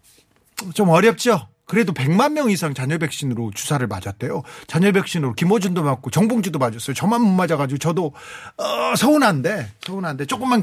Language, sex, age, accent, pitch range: Korean, male, 40-59, native, 130-200 Hz